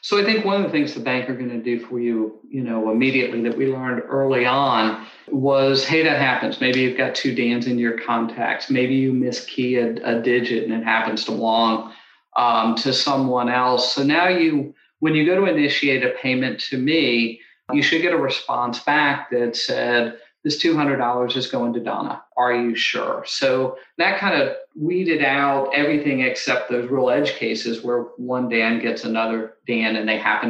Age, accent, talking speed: 40-59, American, 195 wpm